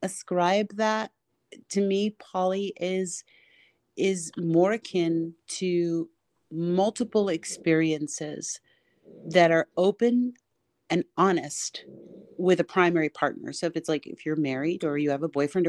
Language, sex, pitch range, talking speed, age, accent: English, female, 155-200 Hz, 120 wpm, 40-59, American